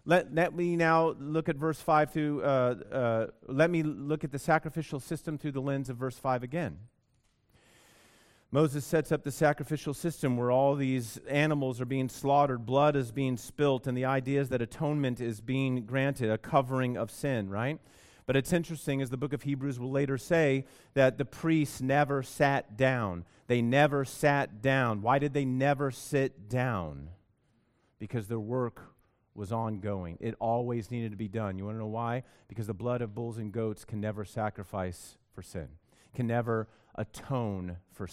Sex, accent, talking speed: male, American, 185 wpm